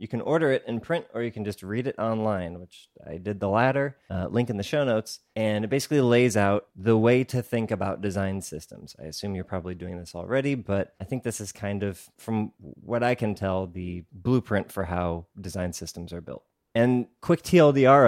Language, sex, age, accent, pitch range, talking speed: English, male, 30-49, American, 95-120 Hz, 220 wpm